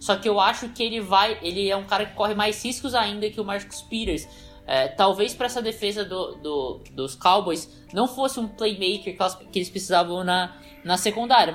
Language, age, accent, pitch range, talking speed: Portuguese, 20-39, Brazilian, 175-225 Hz, 180 wpm